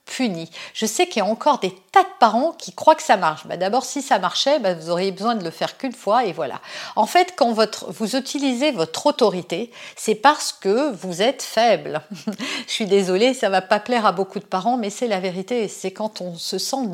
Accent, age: French, 50-69